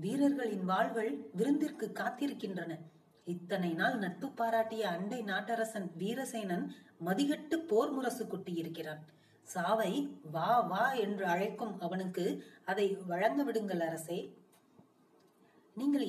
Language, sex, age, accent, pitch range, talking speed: Tamil, female, 30-49, native, 175-235 Hz, 85 wpm